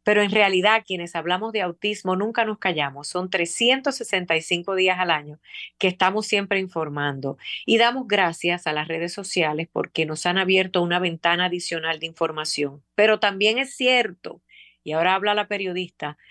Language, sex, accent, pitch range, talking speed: Spanish, female, American, 165-205 Hz, 160 wpm